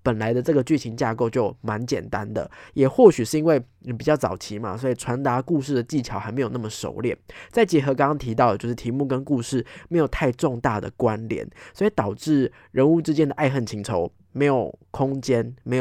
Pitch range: 110-140 Hz